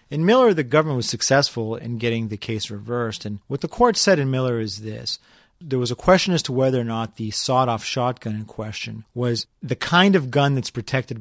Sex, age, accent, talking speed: male, 40-59, American, 220 wpm